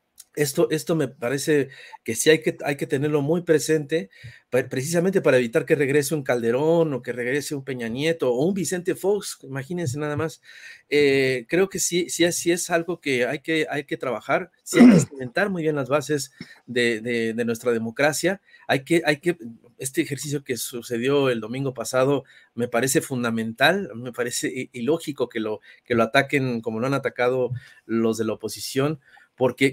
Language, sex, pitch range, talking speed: Spanish, male, 125-160 Hz, 185 wpm